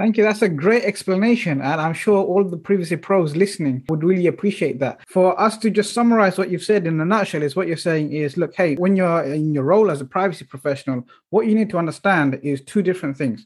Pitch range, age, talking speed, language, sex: 145-200 Hz, 30-49, 240 wpm, English, male